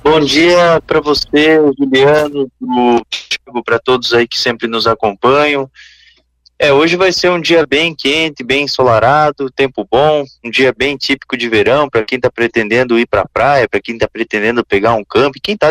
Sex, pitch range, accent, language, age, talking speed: male, 120-160 Hz, Brazilian, Portuguese, 20-39, 185 wpm